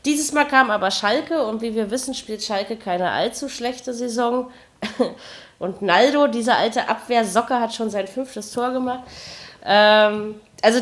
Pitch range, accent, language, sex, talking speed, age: 200-250 Hz, German, German, female, 150 wpm, 30-49